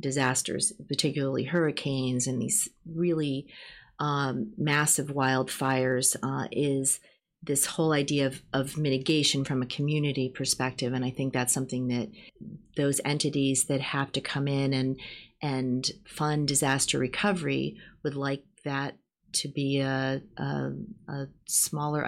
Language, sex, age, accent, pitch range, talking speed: English, female, 40-59, American, 130-155 Hz, 130 wpm